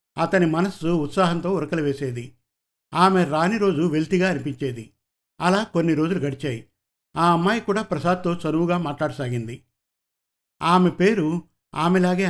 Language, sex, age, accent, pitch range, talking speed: Telugu, male, 50-69, native, 135-185 Hz, 110 wpm